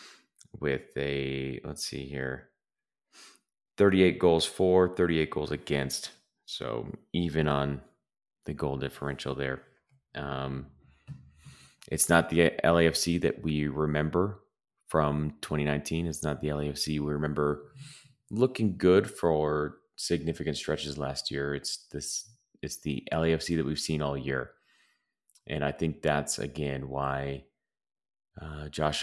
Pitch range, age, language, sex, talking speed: 70-80 Hz, 30-49, English, male, 120 wpm